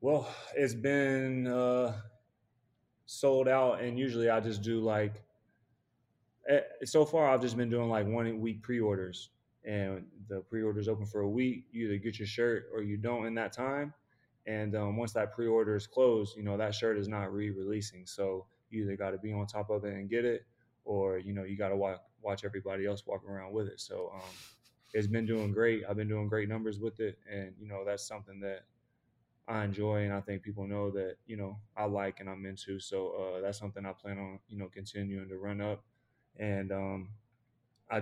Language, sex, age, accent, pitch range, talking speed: English, male, 20-39, American, 100-115 Hz, 205 wpm